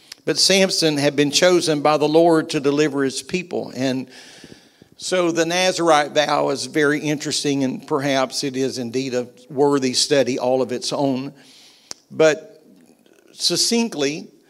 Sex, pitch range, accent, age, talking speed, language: male, 130-150 Hz, American, 50-69, 140 wpm, English